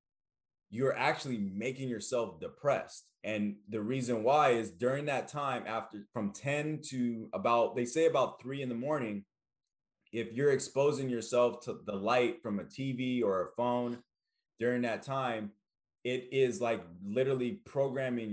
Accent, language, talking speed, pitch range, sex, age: American, English, 150 wpm, 105-130 Hz, male, 20-39